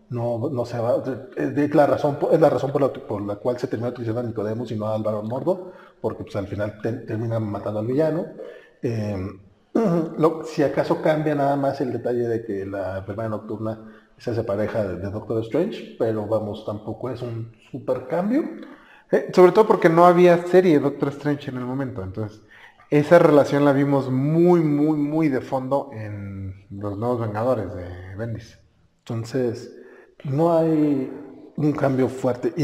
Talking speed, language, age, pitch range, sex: 180 wpm, Spanish, 30-49, 110-150 Hz, male